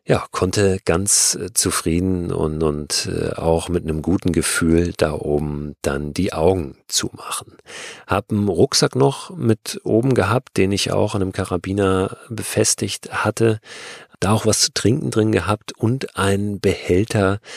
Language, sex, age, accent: German, male, 40-59, German